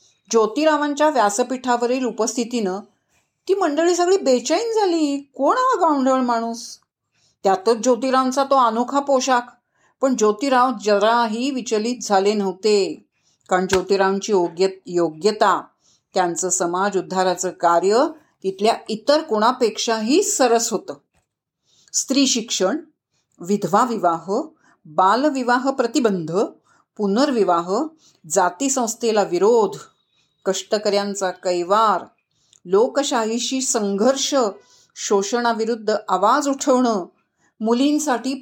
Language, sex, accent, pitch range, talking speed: Marathi, female, native, 200-275 Hz, 80 wpm